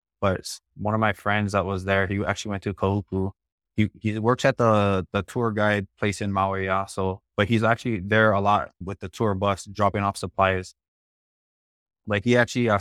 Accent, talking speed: American, 195 wpm